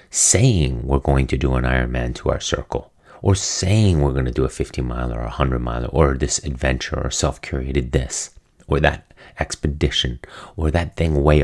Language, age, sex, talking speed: English, 30-49, male, 190 wpm